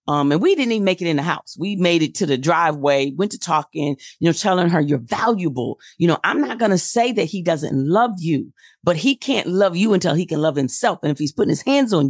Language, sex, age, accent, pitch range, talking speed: English, female, 40-59, American, 155-225 Hz, 270 wpm